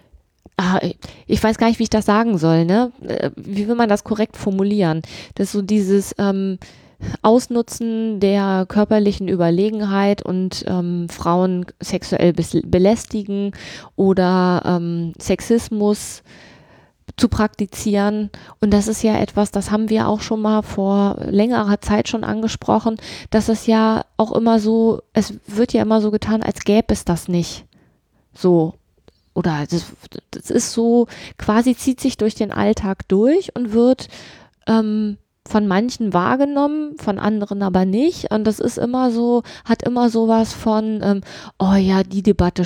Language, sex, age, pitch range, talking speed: German, female, 20-39, 190-225 Hz, 150 wpm